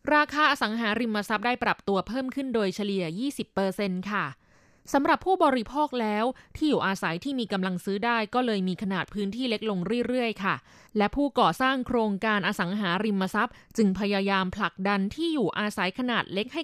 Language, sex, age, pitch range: Thai, female, 20-39, 190-250 Hz